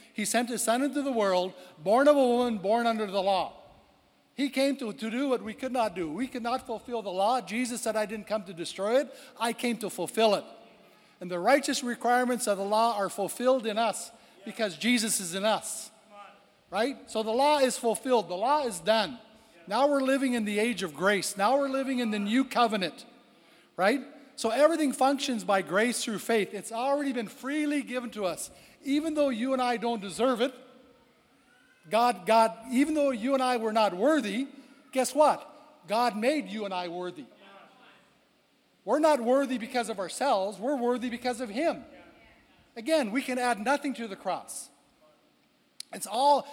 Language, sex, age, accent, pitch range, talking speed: English, male, 60-79, American, 210-260 Hz, 190 wpm